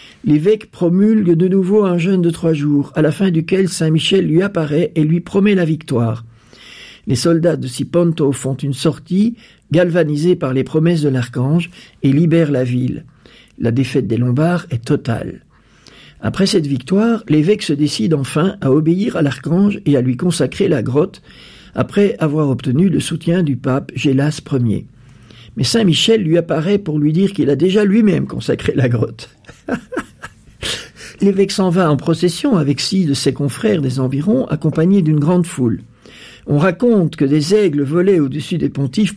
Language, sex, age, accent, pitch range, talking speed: French, male, 50-69, French, 135-180 Hz, 165 wpm